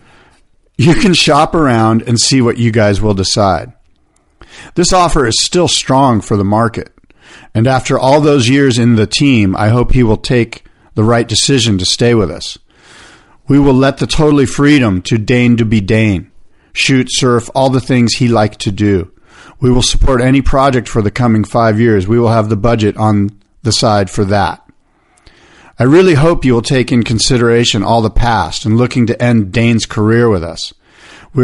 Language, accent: English, American